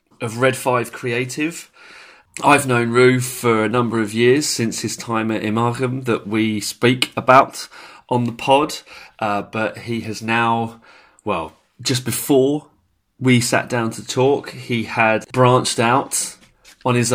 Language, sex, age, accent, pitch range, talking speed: English, male, 30-49, British, 105-125 Hz, 150 wpm